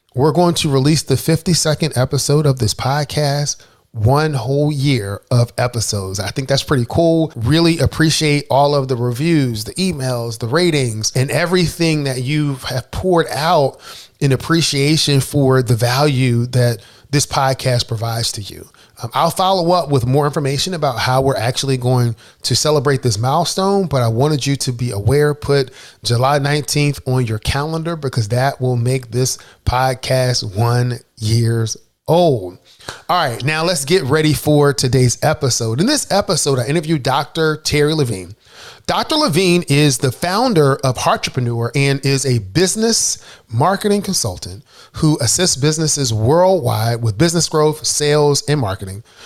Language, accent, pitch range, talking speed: English, American, 120-155 Hz, 150 wpm